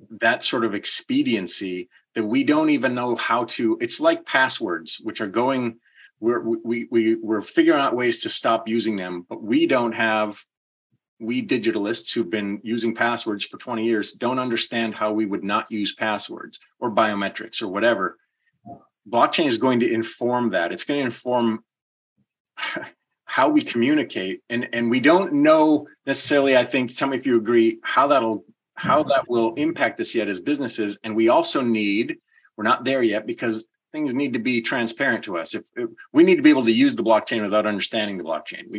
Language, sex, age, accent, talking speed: English, male, 30-49, American, 185 wpm